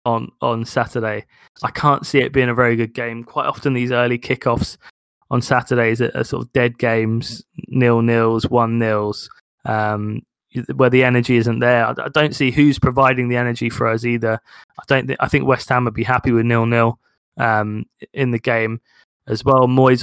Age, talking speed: 20-39, 190 wpm